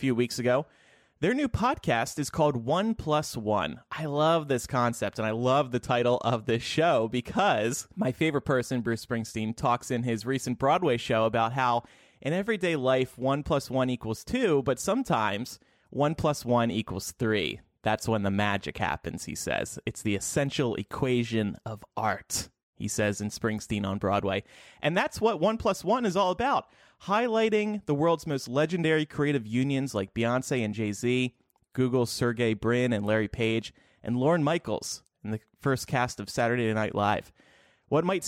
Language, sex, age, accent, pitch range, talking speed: English, male, 30-49, American, 115-150 Hz, 170 wpm